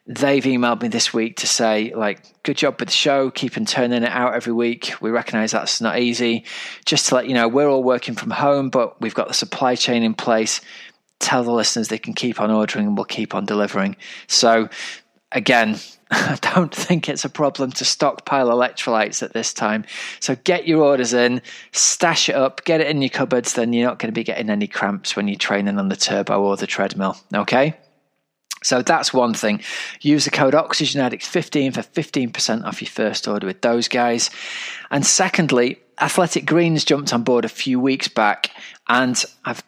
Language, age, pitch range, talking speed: English, 20-39, 110-140 Hz, 200 wpm